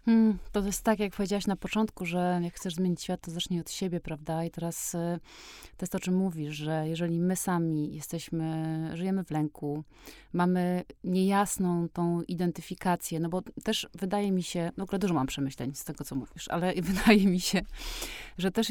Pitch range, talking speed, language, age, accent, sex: 165-190 Hz, 190 wpm, Polish, 30-49, native, female